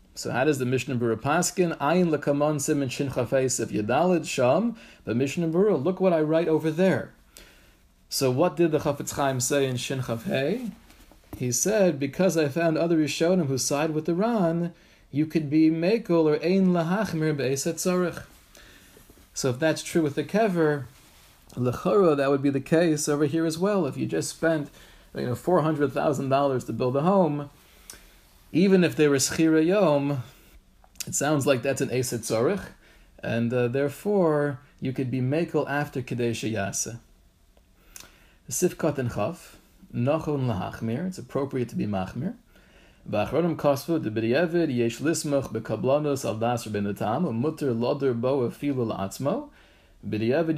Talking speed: 155 wpm